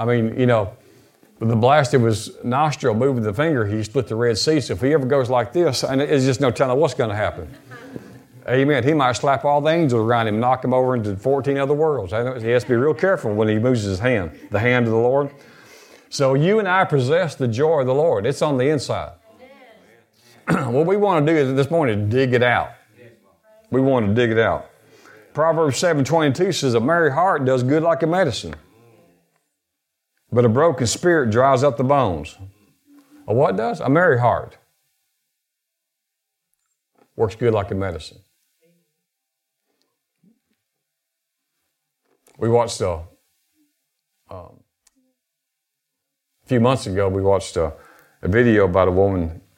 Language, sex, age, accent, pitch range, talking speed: English, male, 50-69, American, 105-145 Hz, 175 wpm